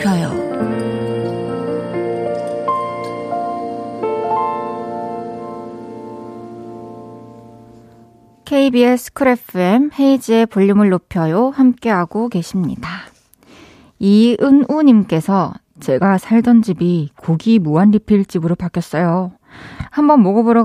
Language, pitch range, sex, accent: Korean, 160-230 Hz, female, native